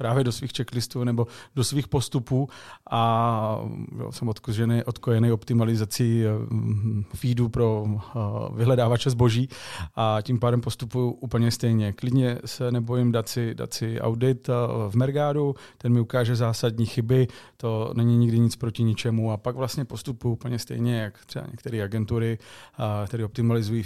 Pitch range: 110-125 Hz